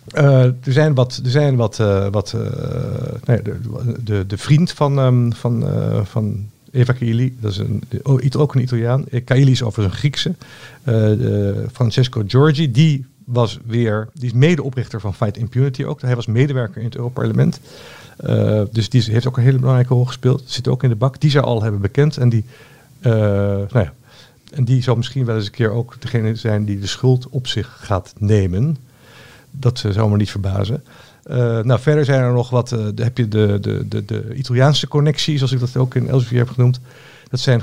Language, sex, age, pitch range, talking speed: Dutch, male, 50-69, 115-130 Hz, 190 wpm